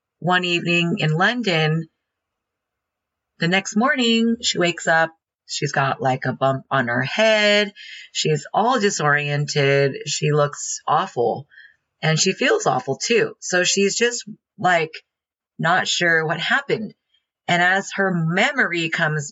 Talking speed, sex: 130 wpm, female